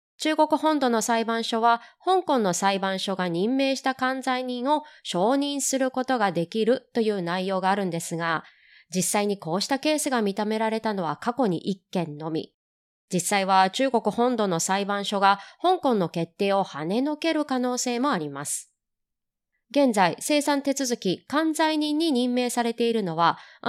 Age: 20-39